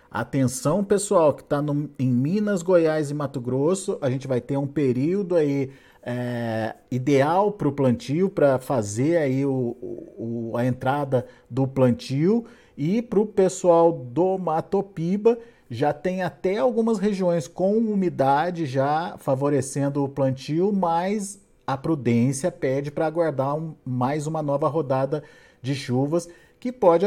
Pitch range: 135-180 Hz